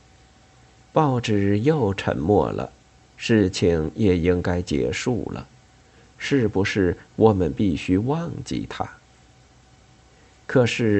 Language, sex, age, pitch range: Chinese, male, 50-69, 95-120 Hz